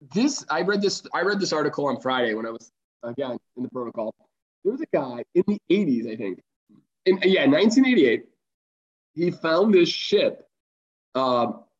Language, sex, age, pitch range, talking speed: English, male, 20-39, 130-185 Hz, 170 wpm